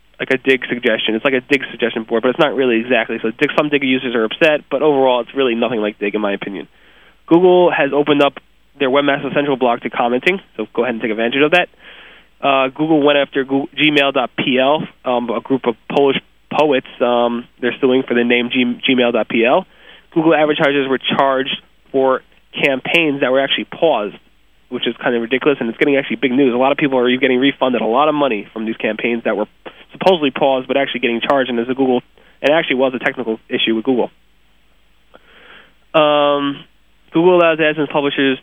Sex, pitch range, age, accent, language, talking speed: male, 120-145 Hz, 20-39, American, English, 200 wpm